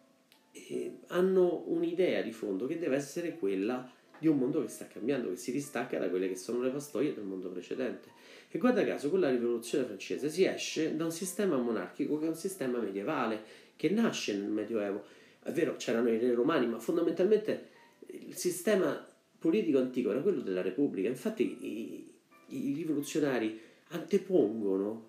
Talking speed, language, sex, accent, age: 165 wpm, Italian, male, native, 40-59